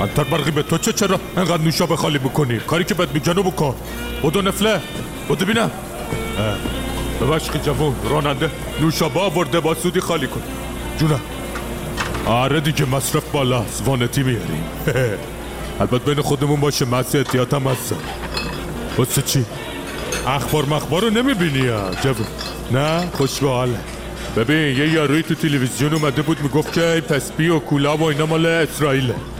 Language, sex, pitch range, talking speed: Persian, male, 145-190 Hz, 135 wpm